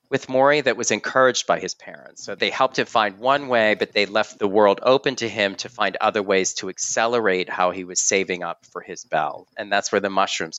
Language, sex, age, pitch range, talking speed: English, male, 40-59, 95-120 Hz, 240 wpm